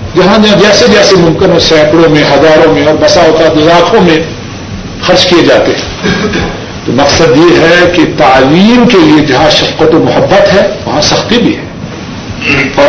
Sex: male